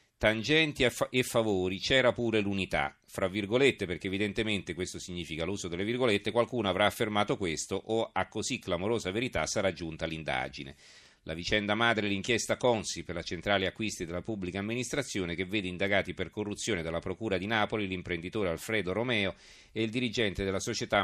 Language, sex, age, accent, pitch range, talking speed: Italian, male, 40-59, native, 90-110 Hz, 165 wpm